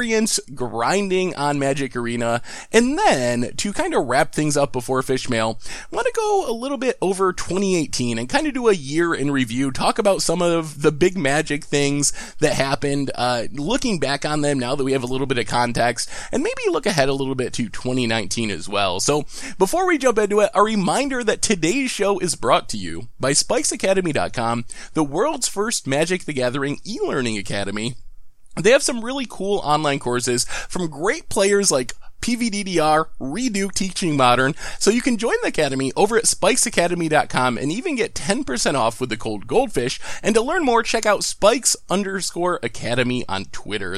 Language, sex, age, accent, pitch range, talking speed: English, male, 20-39, American, 125-205 Hz, 185 wpm